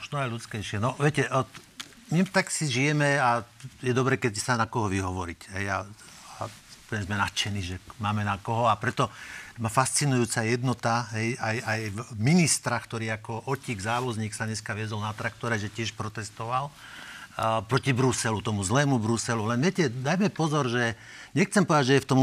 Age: 50-69